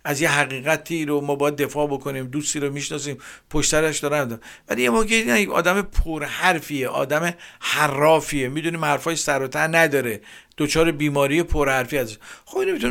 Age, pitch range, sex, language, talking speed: 50-69, 140-170 Hz, male, Persian, 160 wpm